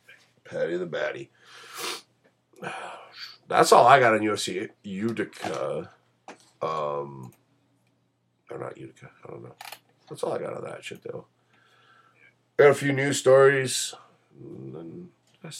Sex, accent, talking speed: male, American, 120 wpm